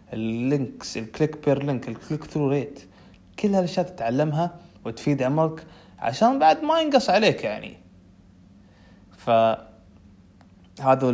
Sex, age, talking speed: male, 20-39, 110 wpm